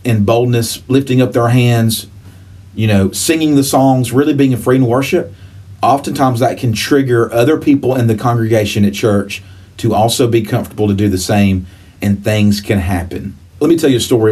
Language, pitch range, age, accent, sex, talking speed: English, 100-125 Hz, 40-59, American, male, 195 wpm